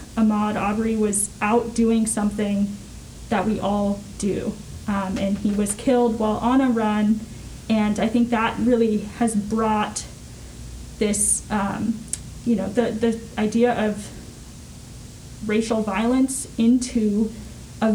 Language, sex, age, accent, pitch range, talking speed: English, female, 10-29, American, 205-230 Hz, 125 wpm